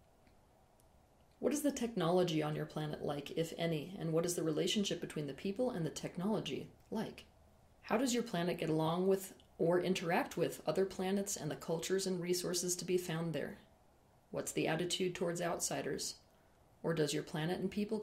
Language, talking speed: English, 180 wpm